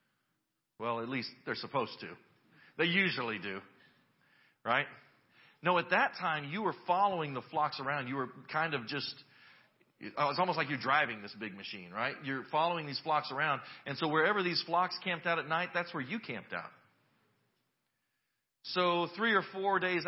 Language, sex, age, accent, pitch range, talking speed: English, male, 40-59, American, 125-175 Hz, 175 wpm